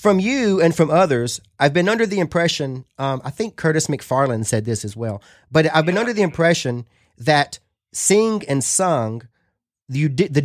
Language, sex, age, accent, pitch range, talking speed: English, male, 30-49, American, 125-175 Hz, 185 wpm